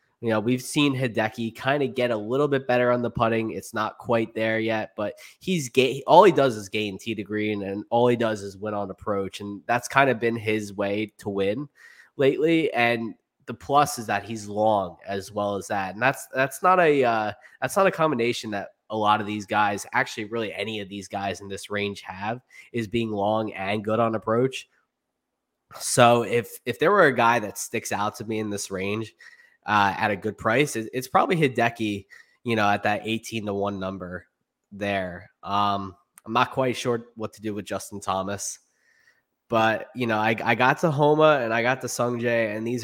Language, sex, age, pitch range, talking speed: English, male, 20-39, 105-120 Hz, 210 wpm